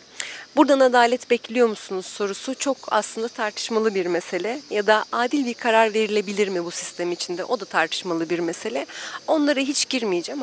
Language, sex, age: Turkish, female, 40-59